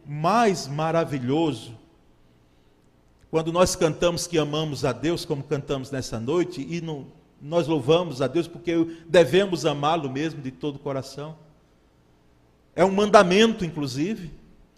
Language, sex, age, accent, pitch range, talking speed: Portuguese, male, 40-59, Brazilian, 150-235 Hz, 120 wpm